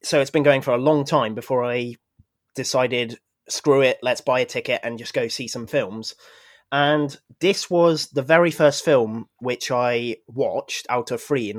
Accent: British